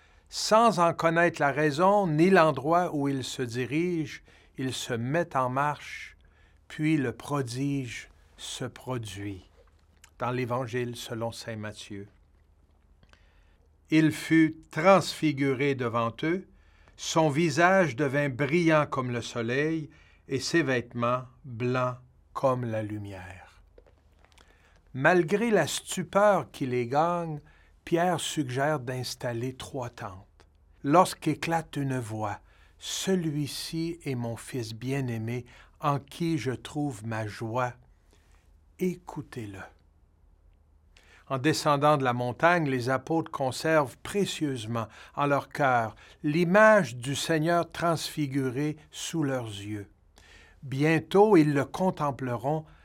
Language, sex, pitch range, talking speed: French, male, 110-155 Hz, 110 wpm